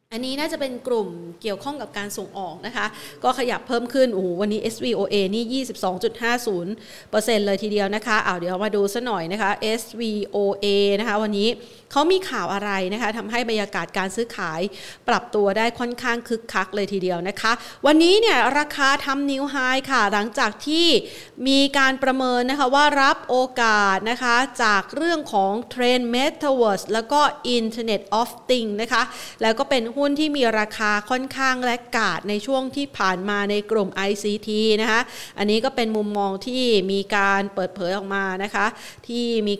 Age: 30-49